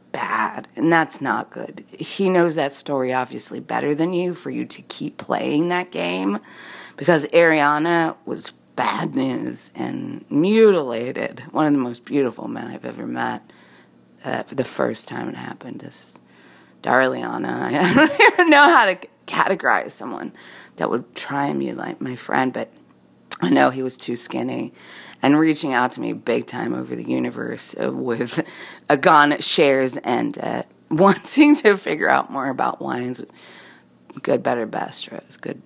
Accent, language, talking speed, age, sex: American, English, 160 wpm, 30-49, female